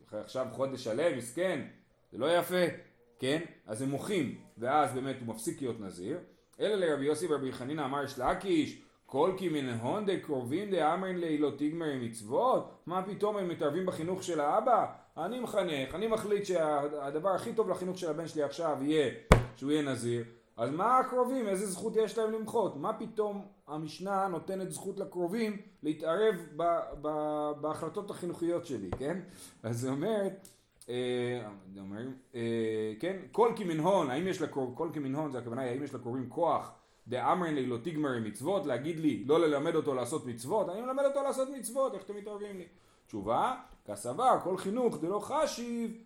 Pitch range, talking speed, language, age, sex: 130-200 Hz, 160 wpm, Hebrew, 30-49, male